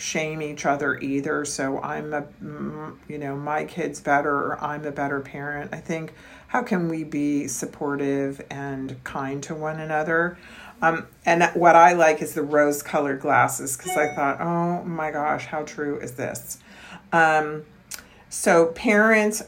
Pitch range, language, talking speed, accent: 145-170 Hz, English, 160 wpm, American